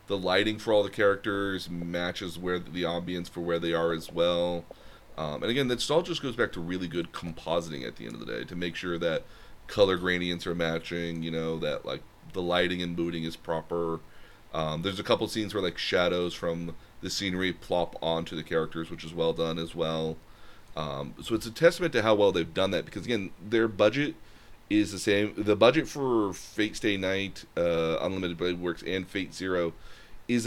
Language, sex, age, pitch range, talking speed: English, male, 30-49, 85-100 Hz, 210 wpm